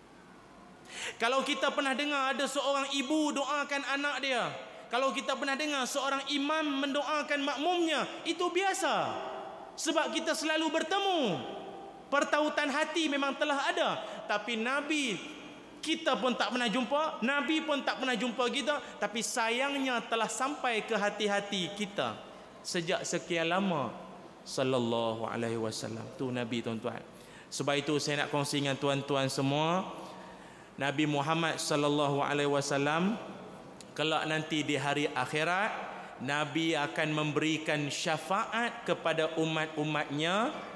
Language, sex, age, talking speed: Malay, male, 30-49, 120 wpm